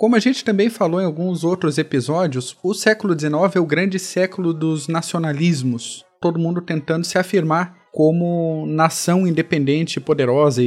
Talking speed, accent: 150 wpm, Brazilian